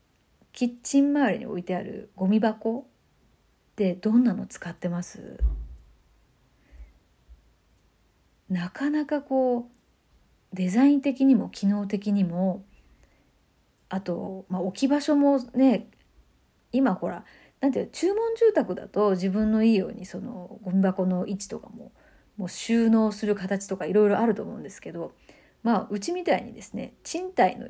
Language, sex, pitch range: Japanese, female, 190-245 Hz